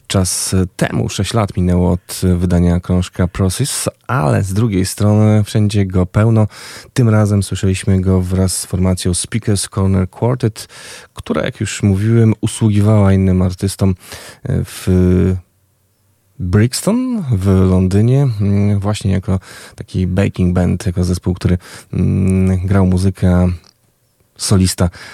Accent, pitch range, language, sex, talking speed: native, 90-105 Hz, Polish, male, 115 wpm